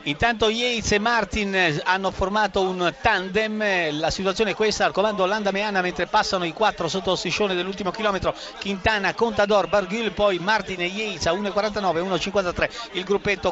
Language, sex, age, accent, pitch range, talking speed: Italian, male, 50-69, native, 190-225 Hz, 160 wpm